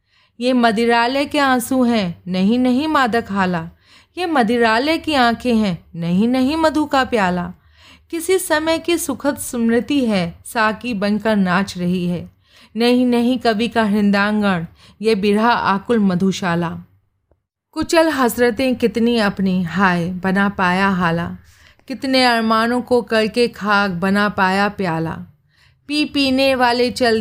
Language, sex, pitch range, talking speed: Hindi, female, 190-245 Hz, 130 wpm